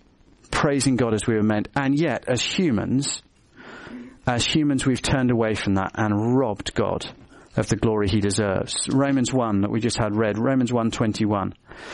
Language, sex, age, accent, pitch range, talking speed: English, male, 40-59, British, 105-135 Hz, 170 wpm